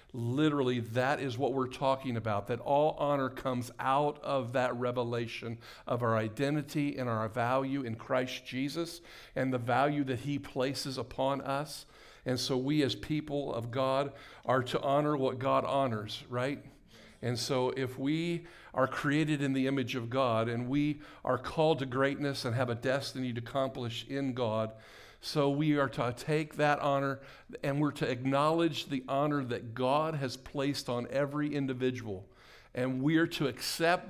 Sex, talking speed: male, 165 wpm